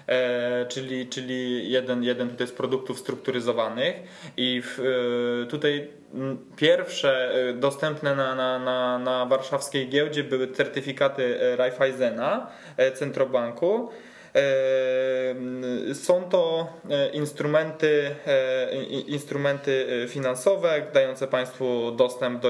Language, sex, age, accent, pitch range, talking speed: Polish, male, 20-39, native, 125-150 Hz, 100 wpm